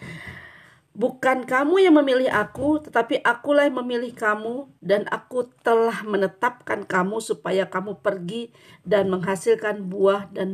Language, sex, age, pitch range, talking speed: Indonesian, female, 40-59, 190-255 Hz, 125 wpm